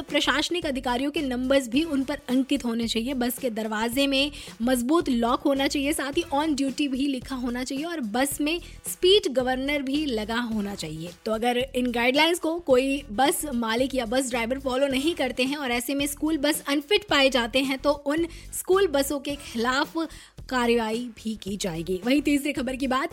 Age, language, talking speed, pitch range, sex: 20-39, Hindi, 195 wpm, 250-310 Hz, female